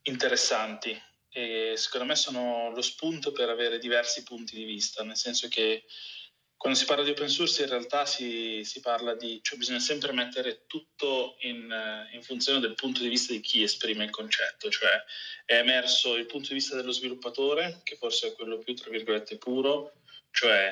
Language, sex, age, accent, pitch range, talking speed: Italian, male, 20-39, native, 115-140 Hz, 180 wpm